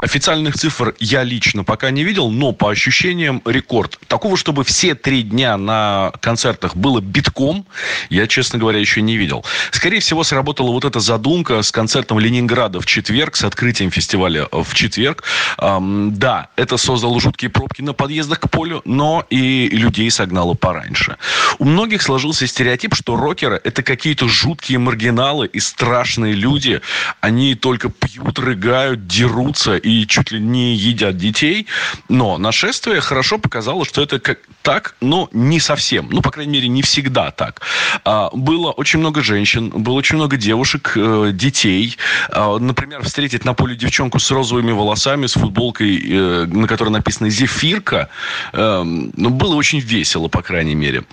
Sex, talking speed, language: male, 150 wpm, Russian